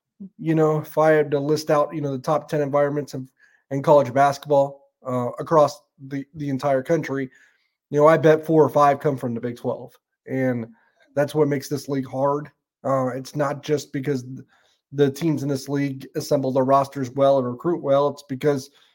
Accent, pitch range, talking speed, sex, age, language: American, 135-155 Hz, 195 wpm, male, 30-49, English